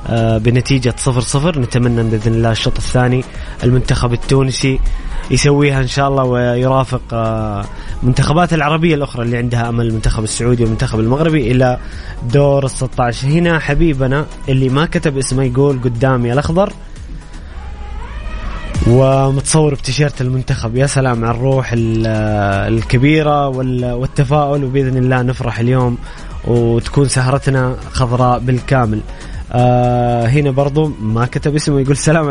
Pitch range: 120-150 Hz